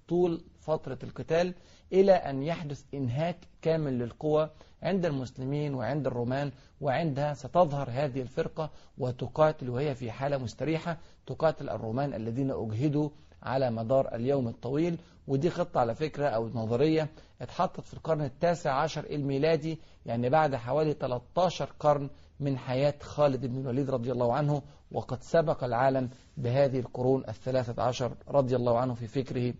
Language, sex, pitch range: Arabic, male, 125-155 Hz